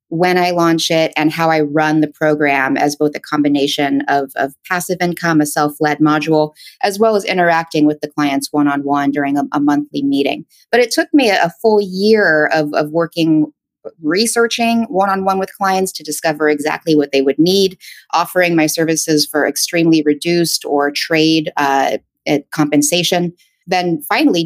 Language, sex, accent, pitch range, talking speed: English, female, American, 150-190 Hz, 165 wpm